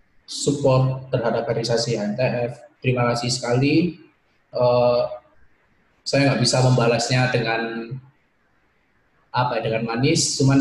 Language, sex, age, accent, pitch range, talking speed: Indonesian, male, 20-39, native, 115-140 Hz, 95 wpm